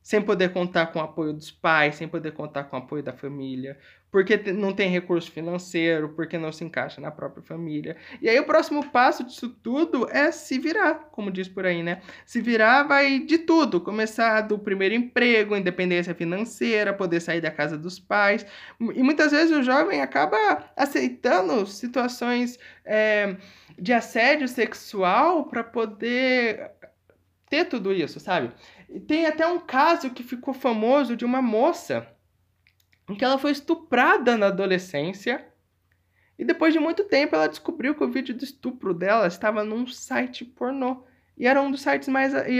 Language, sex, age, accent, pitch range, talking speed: Portuguese, male, 20-39, Brazilian, 165-265 Hz, 165 wpm